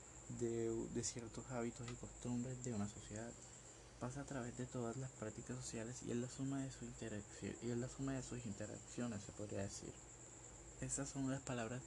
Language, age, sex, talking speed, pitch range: Spanish, 20-39, male, 160 wpm, 110-125 Hz